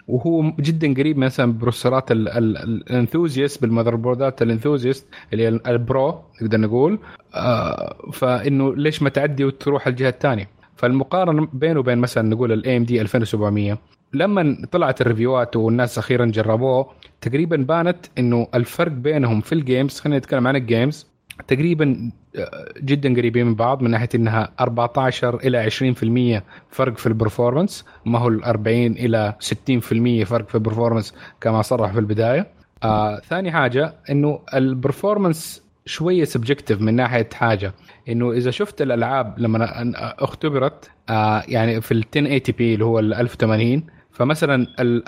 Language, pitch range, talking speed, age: Arabic, 115-140 Hz, 125 wpm, 30-49